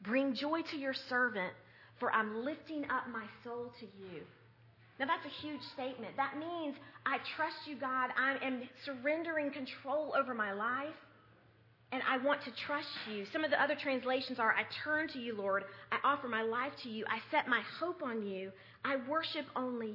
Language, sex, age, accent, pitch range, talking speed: English, female, 40-59, American, 210-265 Hz, 190 wpm